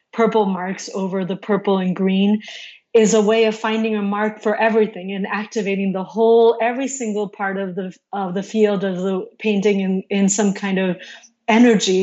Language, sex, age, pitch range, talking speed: English, female, 30-49, 190-215 Hz, 185 wpm